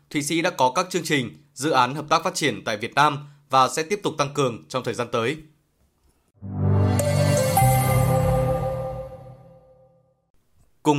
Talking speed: 145 wpm